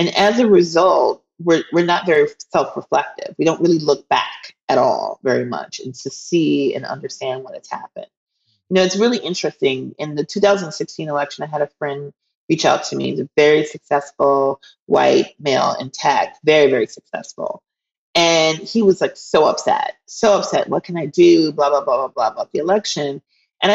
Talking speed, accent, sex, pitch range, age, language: 190 wpm, American, female, 155-215 Hz, 30-49, English